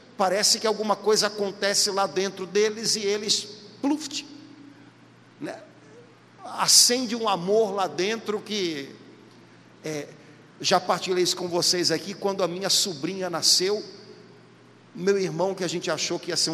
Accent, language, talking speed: Brazilian, Portuguese, 140 wpm